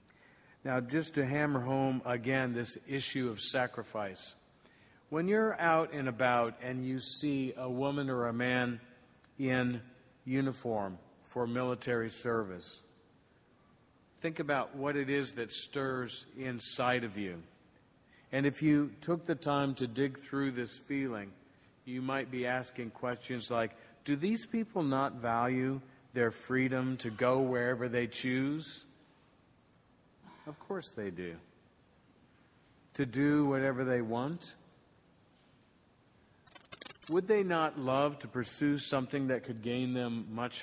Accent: American